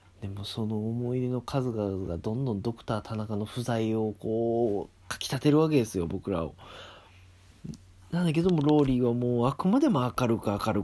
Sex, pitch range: male, 90-120 Hz